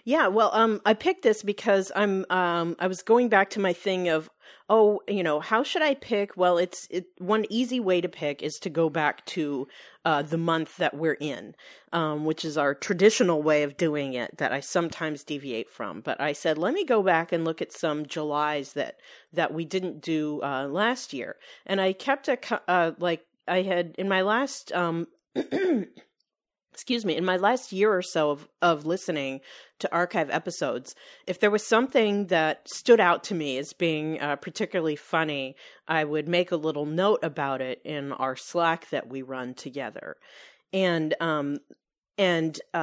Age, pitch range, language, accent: 40-59, 155-195 Hz, English, American